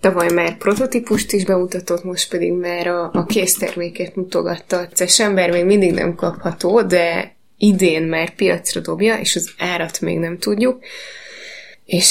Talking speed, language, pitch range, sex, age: 150 wpm, Hungarian, 175-195 Hz, female, 20-39